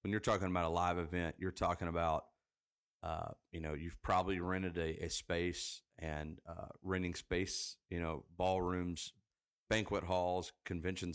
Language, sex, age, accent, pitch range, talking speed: English, male, 40-59, American, 85-95 Hz, 155 wpm